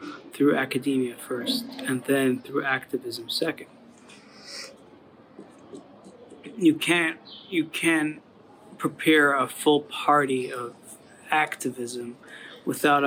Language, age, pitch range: English, 30-49, 125-150 Hz